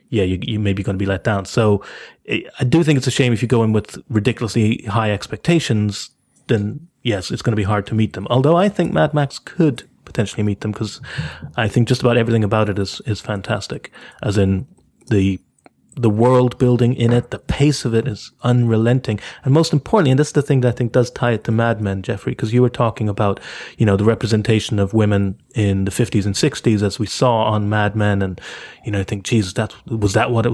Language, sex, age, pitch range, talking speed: English, male, 30-49, 105-125 Hz, 235 wpm